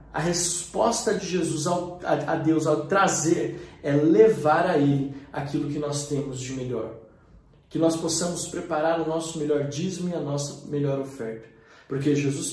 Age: 20-39